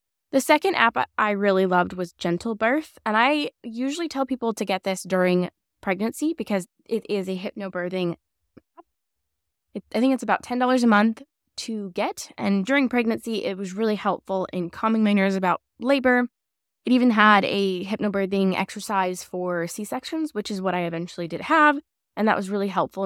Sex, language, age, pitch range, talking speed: female, English, 10-29, 175-230 Hz, 170 wpm